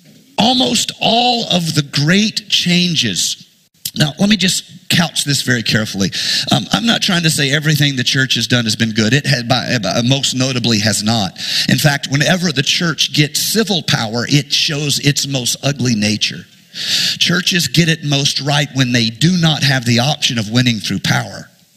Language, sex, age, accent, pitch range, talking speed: English, male, 50-69, American, 125-175 Hz, 175 wpm